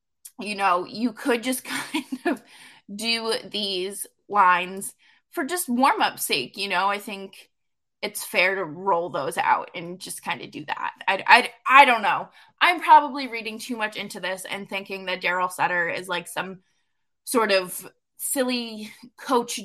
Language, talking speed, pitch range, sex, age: English, 165 wpm, 200-275 Hz, female, 20-39